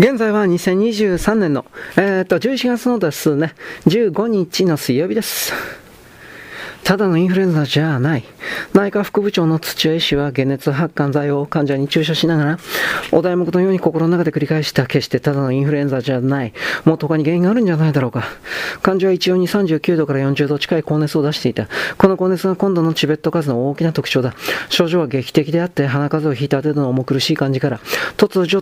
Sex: male